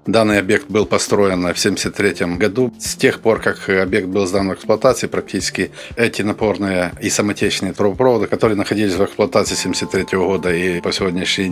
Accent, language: native, Russian